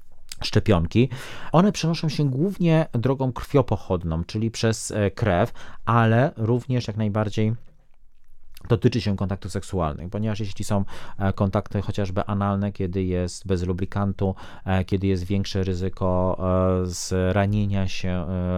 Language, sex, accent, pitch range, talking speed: Polish, male, native, 90-105 Hz, 110 wpm